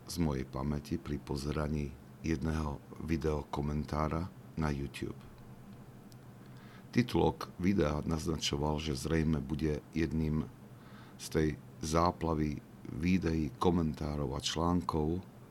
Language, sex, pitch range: Slovak, male, 70-85 Hz